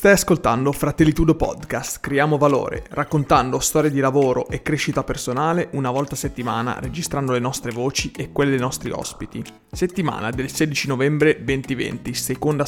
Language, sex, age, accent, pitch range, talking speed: Italian, male, 30-49, native, 125-155 Hz, 150 wpm